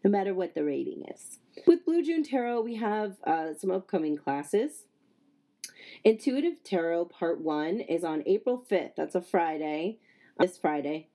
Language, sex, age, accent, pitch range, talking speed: English, female, 30-49, American, 170-230 Hz, 150 wpm